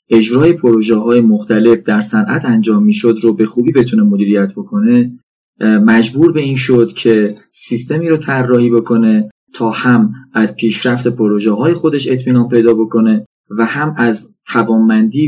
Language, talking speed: Persian, 145 wpm